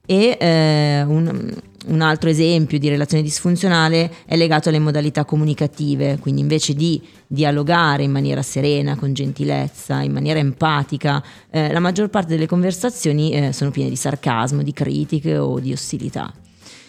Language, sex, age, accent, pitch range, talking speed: Italian, female, 20-39, native, 140-165 Hz, 150 wpm